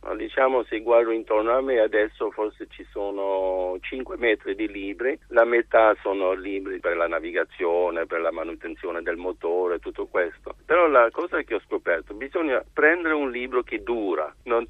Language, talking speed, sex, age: Italian, 165 wpm, male, 50-69